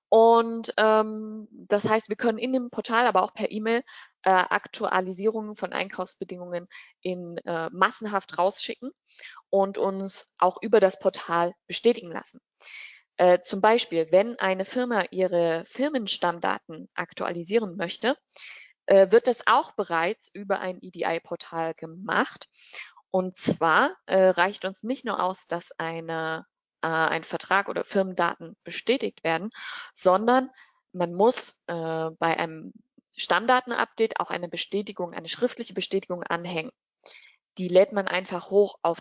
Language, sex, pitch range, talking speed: Polish, female, 175-220 Hz, 130 wpm